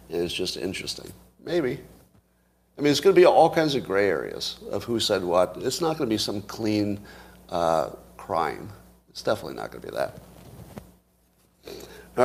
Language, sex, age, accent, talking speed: English, male, 50-69, American, 180 wpm